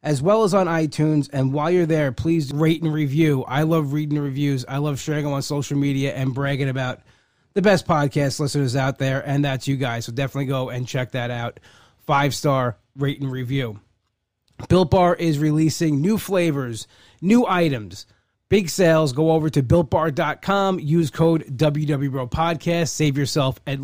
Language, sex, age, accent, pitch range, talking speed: English, male, 20-39, American, 135-160 Hz, 170 wpm